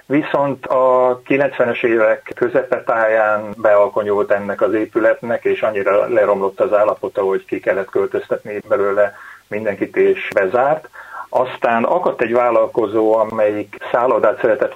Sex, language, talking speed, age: male, Hungarian, 120 wpm, 30-49